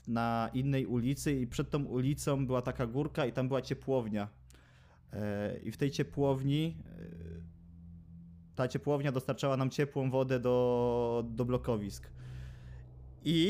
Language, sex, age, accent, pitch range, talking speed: Polish, male, 20-39, native, 110-140 Hz, 125 wpm